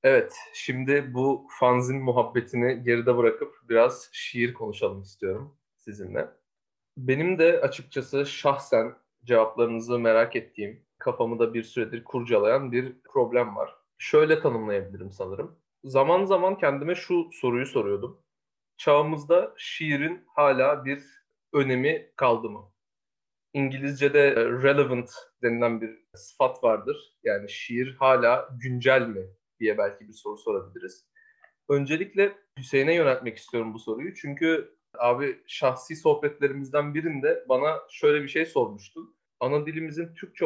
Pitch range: 125-180 Hz